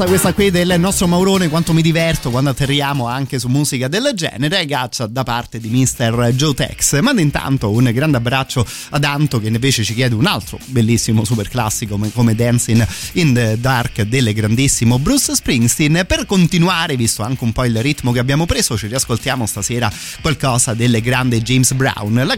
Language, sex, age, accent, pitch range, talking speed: Italian, male, 30-49, native, 110-140 Hz, 180 wpm